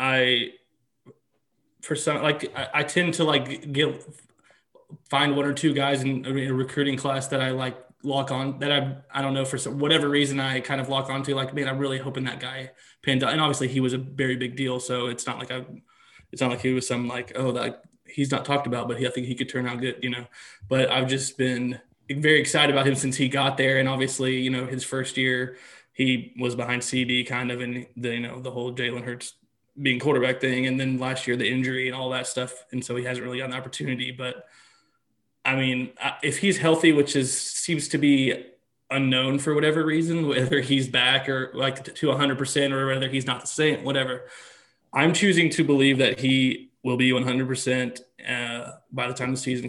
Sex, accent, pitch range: male, American, 125-135 Hz